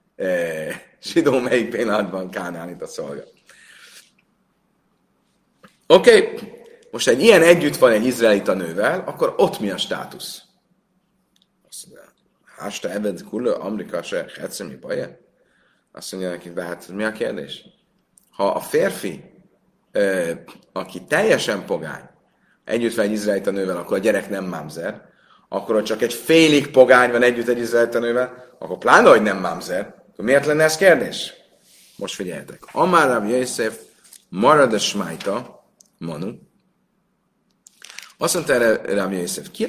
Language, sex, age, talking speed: Hungarian, male, 30-49, 135 wpm